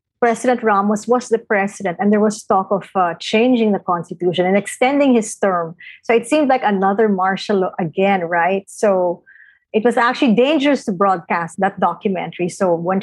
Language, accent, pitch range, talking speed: English, Filipino, 185-230 Hz, 170 wpm